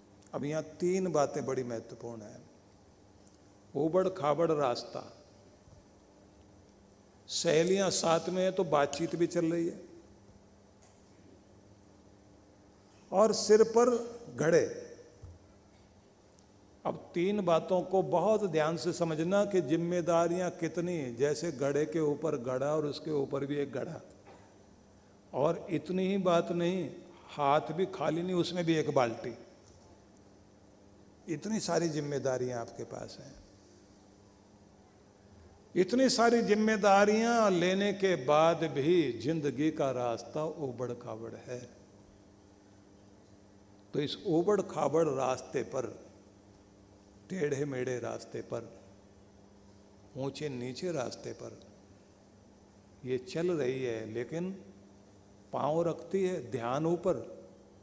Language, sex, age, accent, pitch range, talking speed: Hindi, male, 50-69, native, 100-170 Hz, 105 wpm